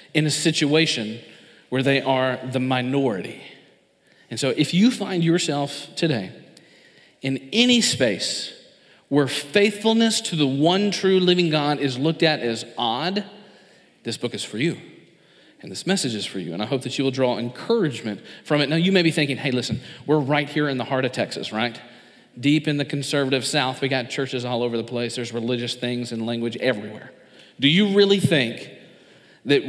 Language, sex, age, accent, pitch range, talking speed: English, male, 40-59, American, 125-160 Hz, 185 wpm